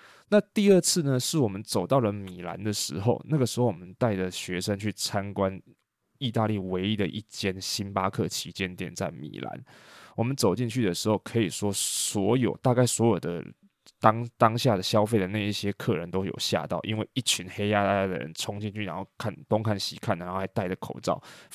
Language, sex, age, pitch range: Chinese, male, 20-39, 95-120 Hz